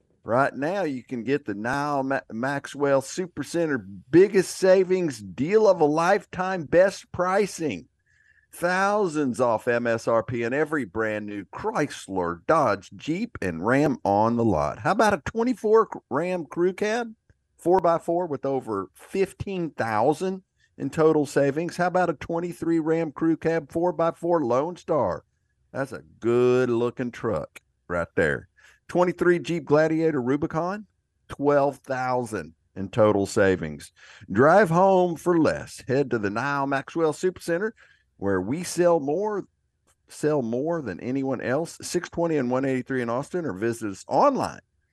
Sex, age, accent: male, 50-69, American